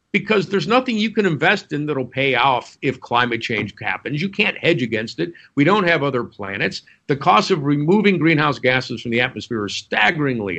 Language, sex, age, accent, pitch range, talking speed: English, male, 50-69, American, 120-170 Hz, 200 wpm